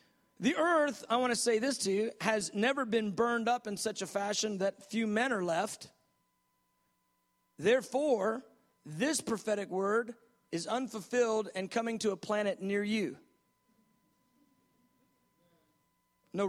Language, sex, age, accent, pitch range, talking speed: English, male, 40-59, American, 215-280 Hz, 135 wpm